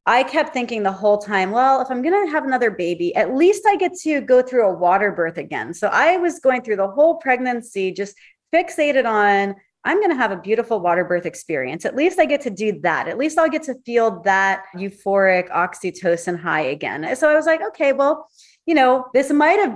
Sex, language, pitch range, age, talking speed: female, English, 195-265 Hz, 30-49, 220 wpm